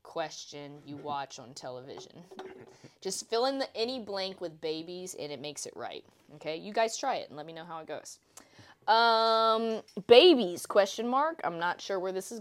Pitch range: 155-220 Hz